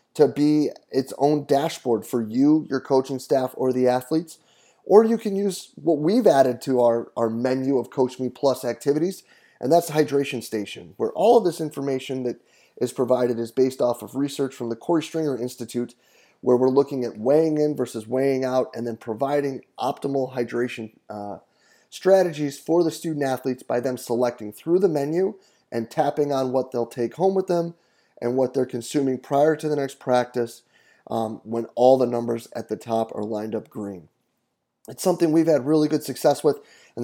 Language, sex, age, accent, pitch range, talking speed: English, male, 30-49, American, 120-145 Hz, 190 wpm